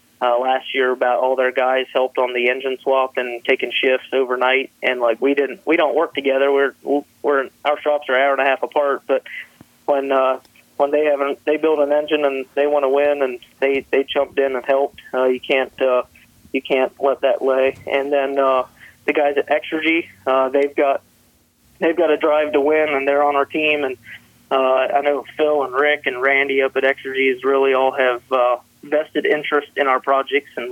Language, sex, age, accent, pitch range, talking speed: English, male, 30-49, American, 130-145 Hz, 215 wpm